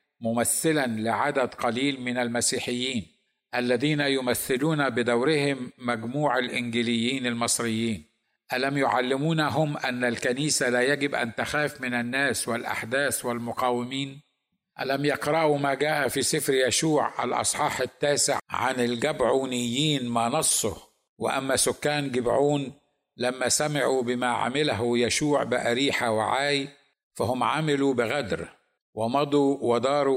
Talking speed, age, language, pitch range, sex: 100 wpm, 50-69, Arabic, 120-145 Hz, male